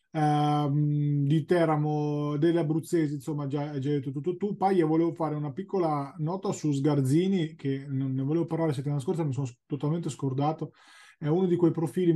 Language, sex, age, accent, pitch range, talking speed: Italian, male, 20-39, native, 135-160 Hz, 180 wpm